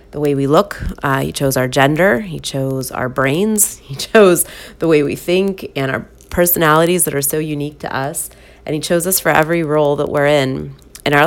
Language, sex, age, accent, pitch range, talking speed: English, female, 30-49, American, 140-155 Hz, 215 wpm